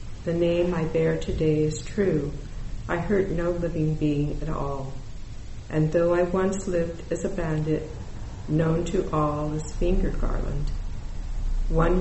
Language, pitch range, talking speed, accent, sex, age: English, 145-175 Hz, 145 wpm, American, female, 50-69